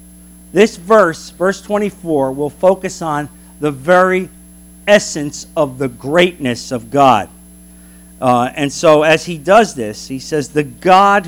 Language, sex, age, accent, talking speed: English, male, 50-69, American, 140 wpm